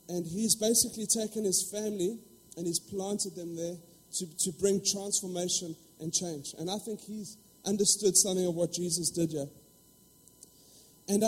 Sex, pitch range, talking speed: male, 180-220 Hz, 155 wpm